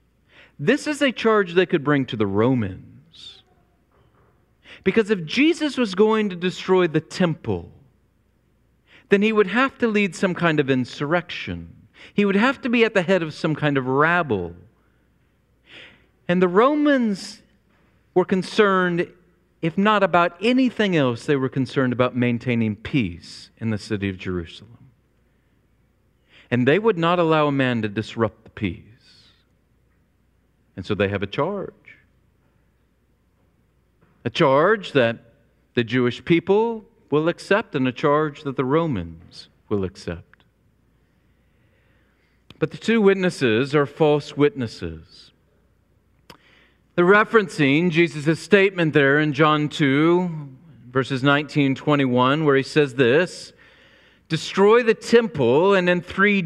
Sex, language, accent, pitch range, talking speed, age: male, English, American, 125-190 Hz, 135 wpm, 40-59